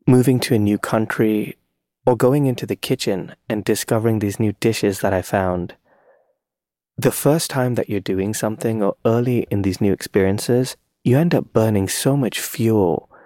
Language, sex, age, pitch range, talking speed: English, male, 30-49, 100-115 Hz, 170 wpm